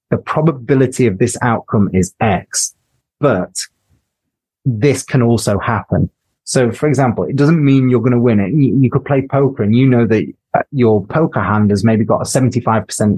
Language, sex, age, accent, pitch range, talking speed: English, male, 30-49, British, 110-135 Hz, 185 wpm